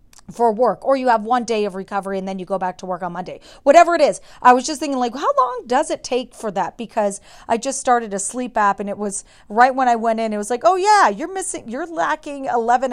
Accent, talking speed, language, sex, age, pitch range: American, 270 wpm, English, female, 30-49, 215-280 Hz